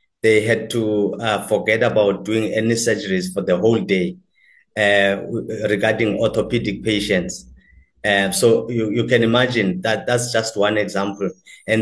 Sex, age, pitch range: male, 30-49, 105-120 Hz